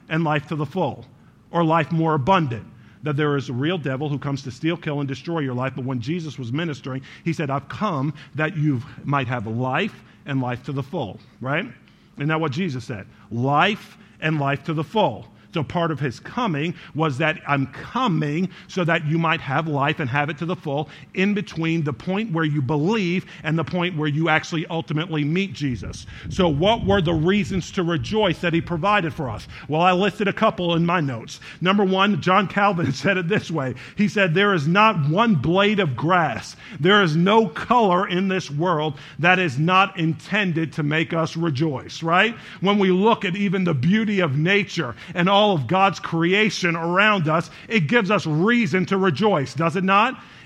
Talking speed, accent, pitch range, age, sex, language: 205 wpm, American, 145-190 Hz, 50-69, male, English